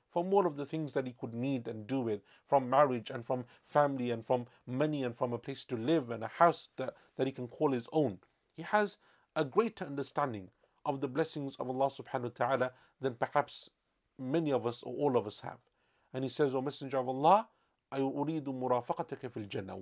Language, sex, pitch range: English, male, 125-170 Hz